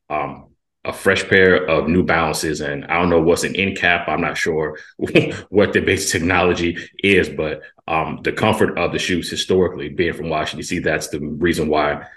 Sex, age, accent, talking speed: male, 30-49, American, 195 wpm